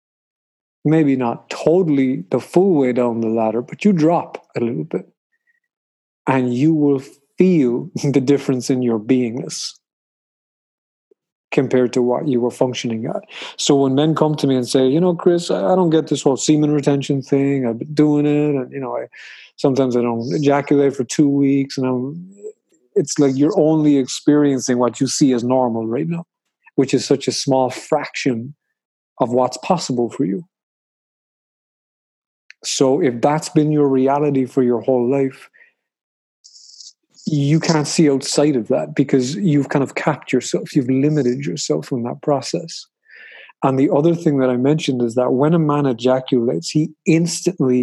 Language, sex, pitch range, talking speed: English, male, 130-155 Hz, 165 wpm